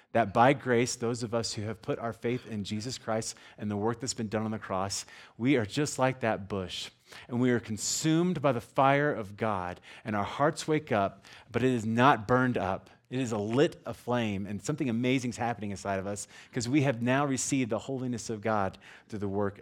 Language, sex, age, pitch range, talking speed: English, male, 30-49, 100-125 Hz, 225 wpm